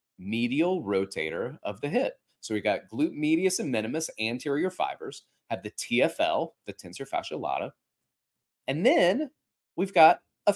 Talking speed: 150 wpm